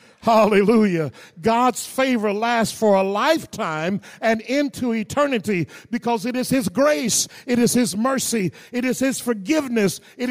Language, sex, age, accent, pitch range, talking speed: English, male, 50-69, American, 210-250 Hz, 140 wpm